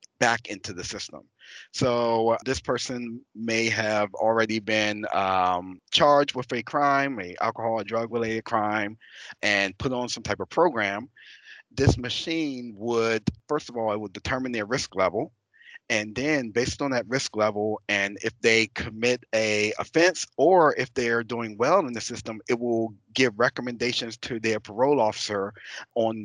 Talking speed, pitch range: 165 wpm, 105-125 Hz